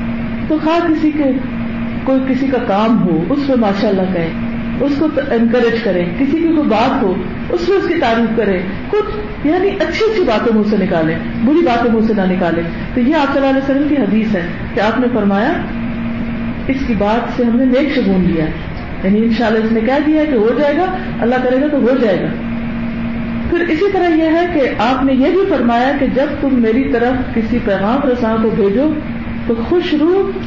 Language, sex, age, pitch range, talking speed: Urdu, female, 50-69, 225-295 Hz, 215 wpm